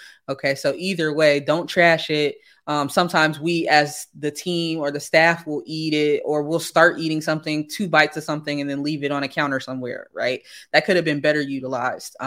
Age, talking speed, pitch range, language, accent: 20-39, 210 wpm, 150-180 Hz, English, American